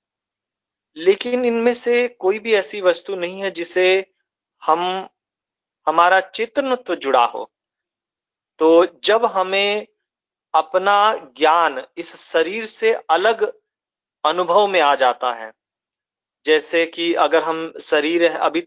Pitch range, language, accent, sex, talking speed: 160-250 Hz, Hindi, native, male, 115 wpm